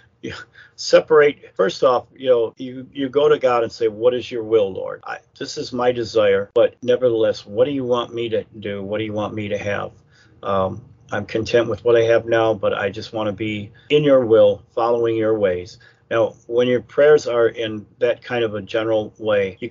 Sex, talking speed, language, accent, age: male, 220 wpm, English, American, 40-59